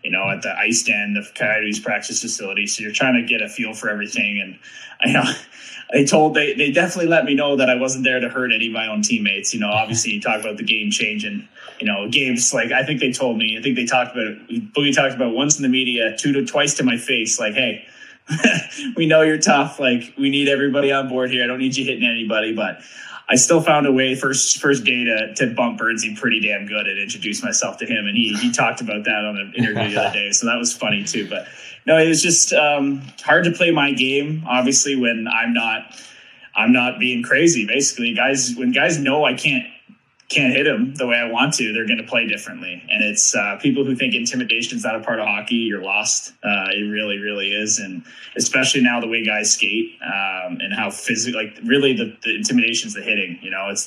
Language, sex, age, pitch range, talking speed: English, male, 20-39, 115-155 Hz, 245 wpm